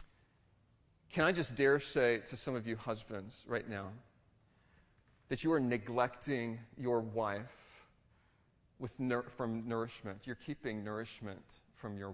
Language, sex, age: English, male, 40-59